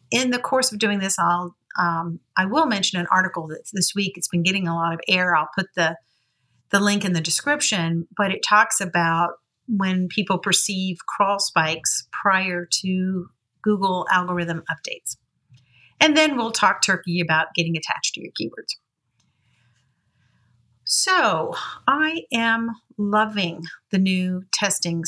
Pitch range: 170-220 Hz